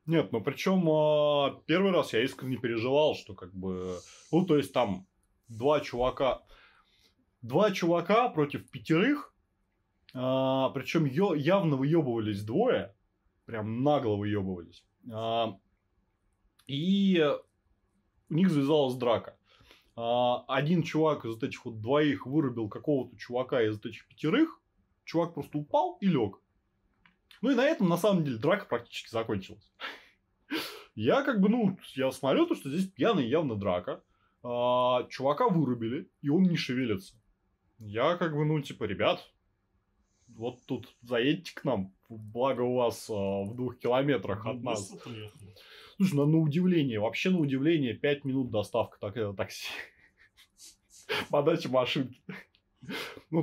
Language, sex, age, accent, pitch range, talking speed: Russian, male, 20-39, native, 105-155 Hz, 130 wpm